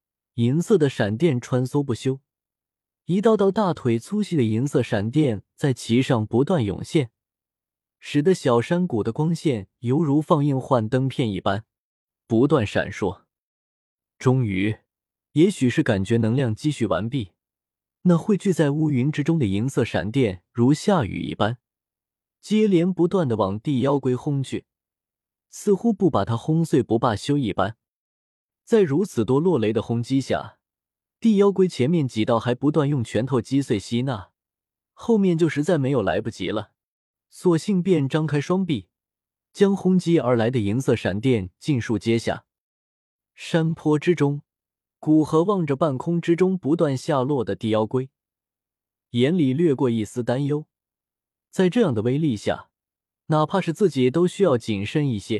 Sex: male